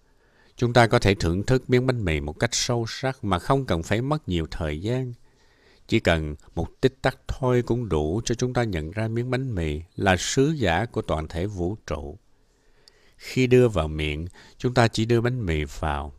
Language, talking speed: Vietnamese, 210 wpm